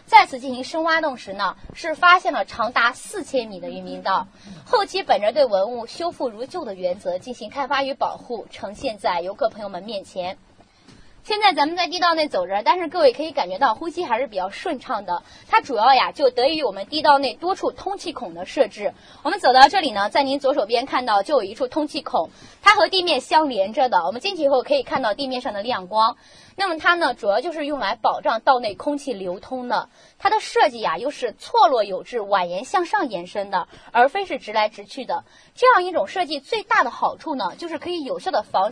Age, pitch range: 20-39, 240-325 Hz